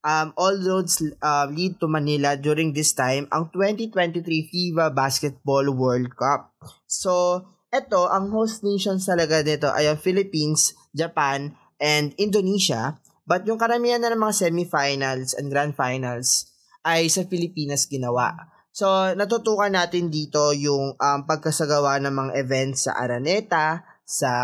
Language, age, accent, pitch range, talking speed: Filipino, 20-39, native, 145-180 Hz, 135 wpm